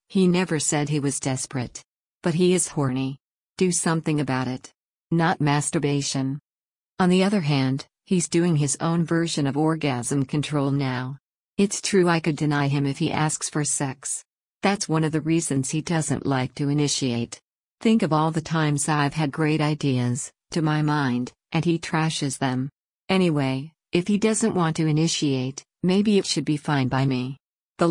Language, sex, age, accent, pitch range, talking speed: English, female, 50-69, American, 140-175 Hz, 175 wpm